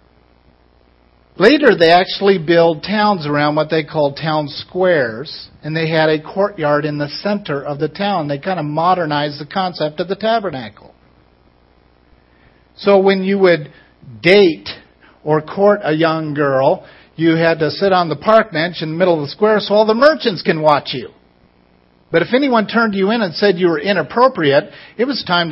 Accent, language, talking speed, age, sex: American, English, 180 wpm, 50-69, male